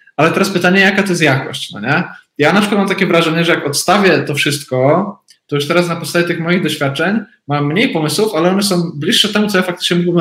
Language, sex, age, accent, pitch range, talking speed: Polish, male, 20-39, native, 145-180 Hz, 235 wpm